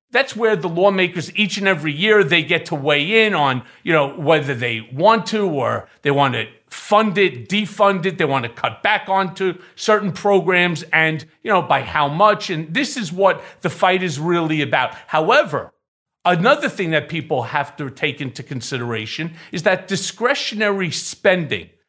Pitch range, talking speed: 155-210 Hz, 180 wpm